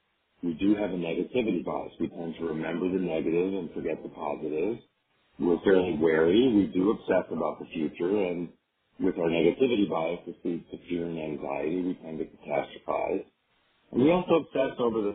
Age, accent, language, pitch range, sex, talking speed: 50-69, American, English, 85-100 Hz, male, 180 wpm